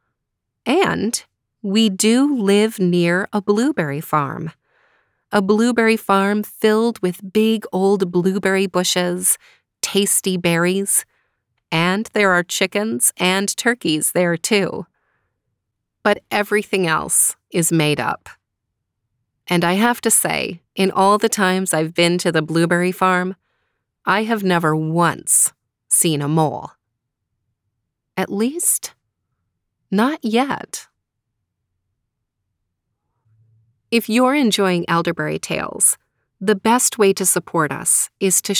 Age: 30-49